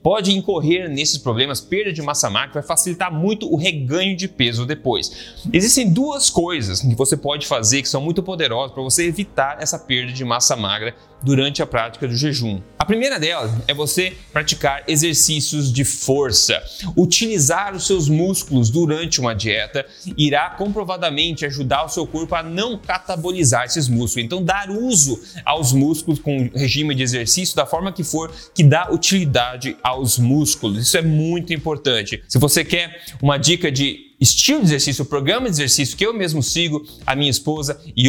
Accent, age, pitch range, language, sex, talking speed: Brazilian, 30-49, 135-175 Hz, Portuguese, male, 175 wpm